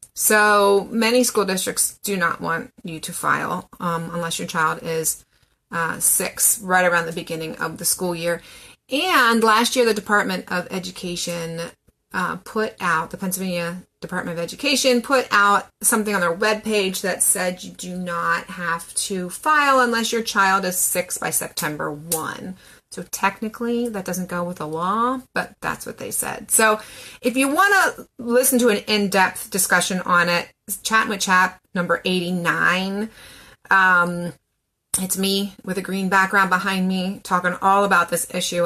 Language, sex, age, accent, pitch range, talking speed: English, female, 30-49, American, 175-220 Hz, 165 wpm